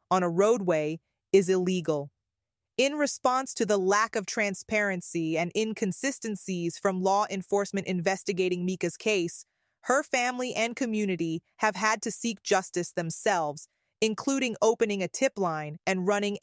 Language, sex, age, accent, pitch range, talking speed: English, female, 30-49, American, 180-225 Hz, 135 wpm